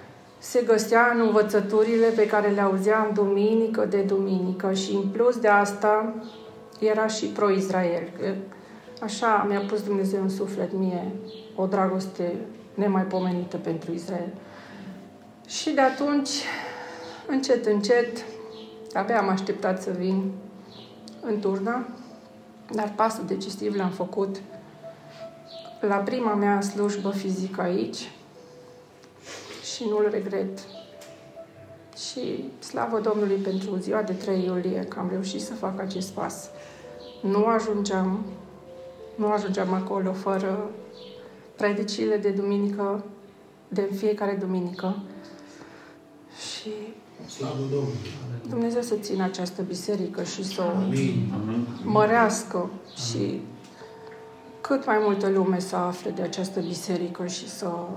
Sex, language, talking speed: female, Romanian, 110 wpm